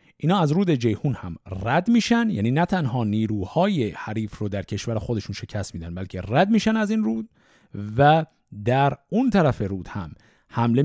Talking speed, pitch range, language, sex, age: 170 wpm, 105-160 Hz, Persian, male, 50-69